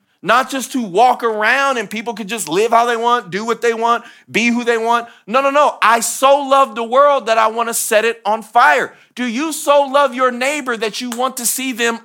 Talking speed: 245 wpm